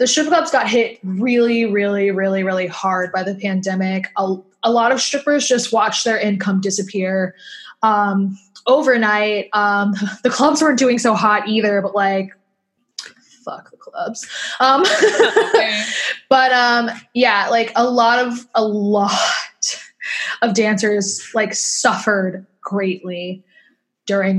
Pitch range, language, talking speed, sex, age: 200-240 Hz, English, 135 wpm, female, 20-39